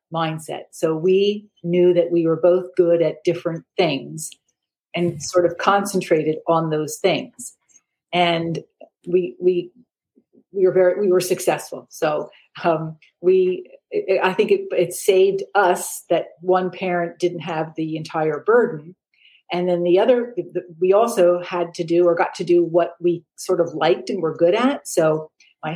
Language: English